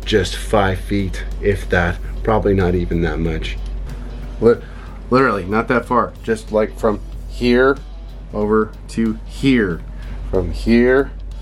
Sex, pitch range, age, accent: male, 90-115 Hz, 30-49, American